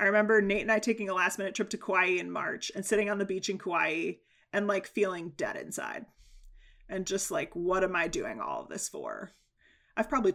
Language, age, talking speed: English, 30-49, 225 wpm